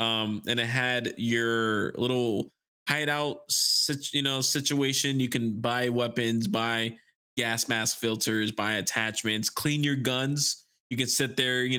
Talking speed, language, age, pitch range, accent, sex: 155 wpm, English, 20-39, 110-130 Hz, American, male